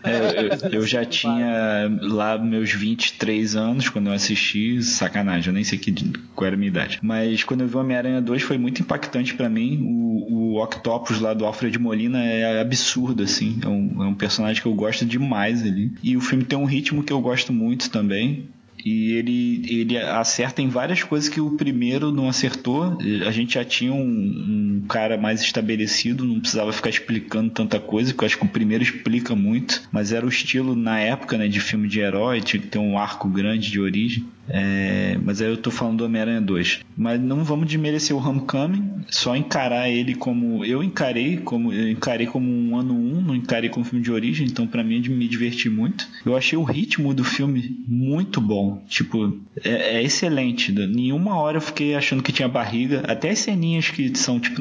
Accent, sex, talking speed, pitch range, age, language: Brazilian, male, 200 wpm, 110-135 Hz, 20-39, Portuguese